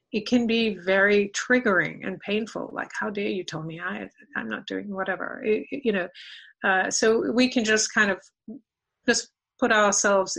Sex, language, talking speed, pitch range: female, English, 185 wpm, 175-210 Hz